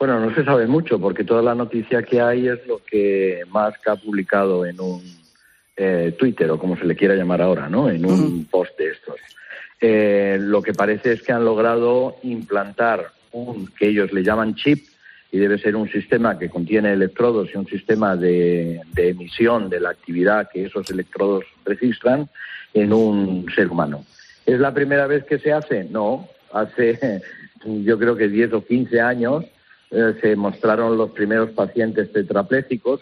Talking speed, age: 175 wpm, 50-69